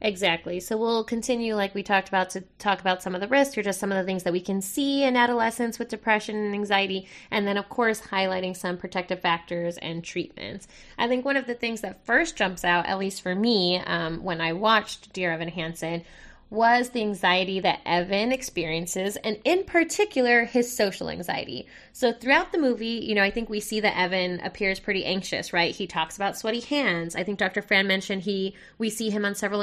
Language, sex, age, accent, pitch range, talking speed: English, female, 20-39, American, 185-230 Hz, 215 wpm